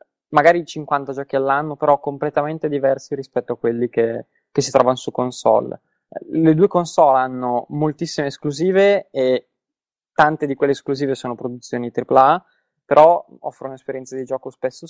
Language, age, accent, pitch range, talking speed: Italian, 20-39, native, 120-145 Hz, 145 wpm